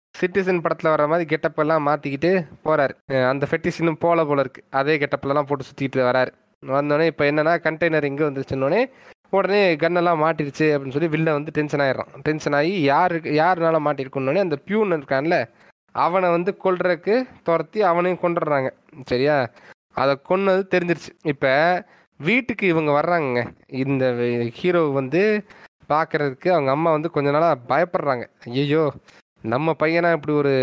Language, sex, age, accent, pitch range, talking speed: Tamil, male, 20-39, native, 140-170 Hz, 135 wpm